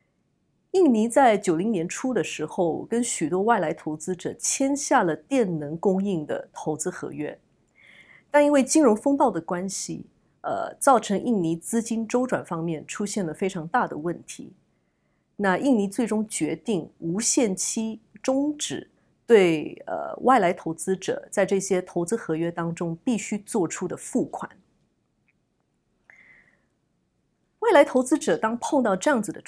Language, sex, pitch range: English, female, 170-245 Hz